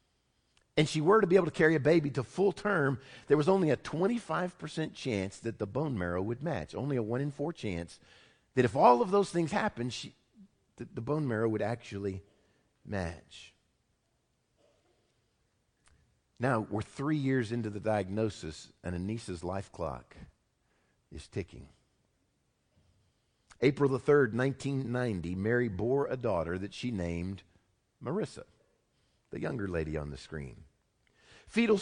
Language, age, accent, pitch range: English, 50-69, American, 100-150 Hz